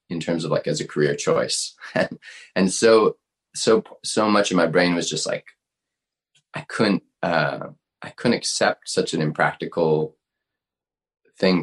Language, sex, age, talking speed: English, male, 20-39, 150 wpm